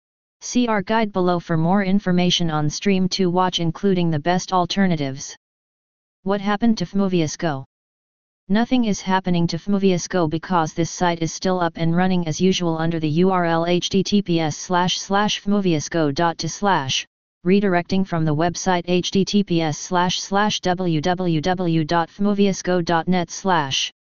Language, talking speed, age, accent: English, 105 wpm, 20-39, American